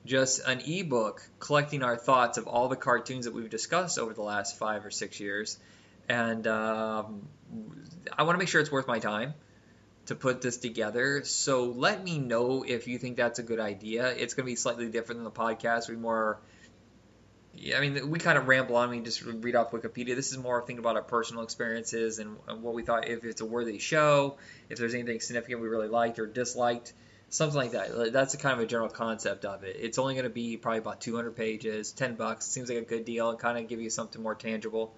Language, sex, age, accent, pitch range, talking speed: English, male, 20-39, American, 115-130 Hz, 230 wpm